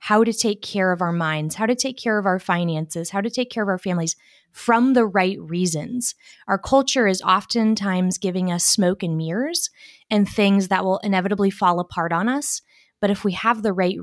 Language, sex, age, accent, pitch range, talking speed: English, female, 20-39, American, 175-220 Hz, 210 wpm